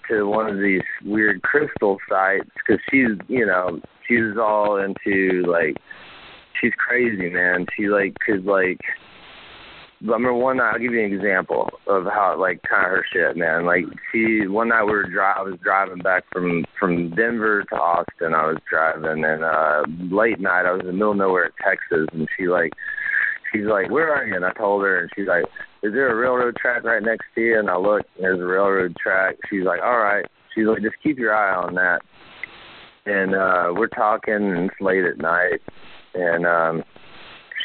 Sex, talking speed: male, 200 wpm